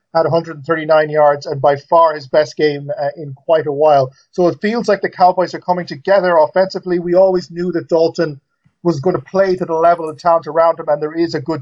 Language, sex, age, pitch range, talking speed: English, male, 30-49, 155-180 Hz, 230 wpm